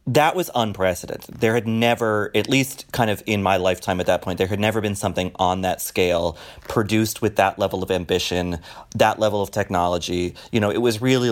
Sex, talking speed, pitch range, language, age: male, 205 wpm, 90-115 Hz, English, 30-49